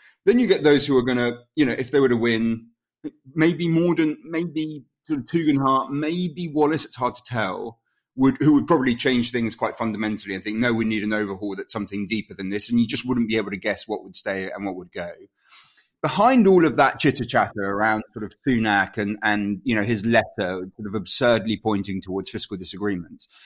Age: 30-49